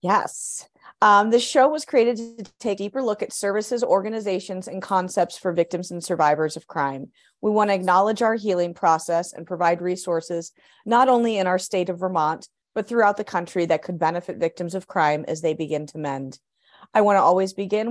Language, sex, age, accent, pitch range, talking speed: English, female, 30-49, American, 170-205 Hz, 200 wpm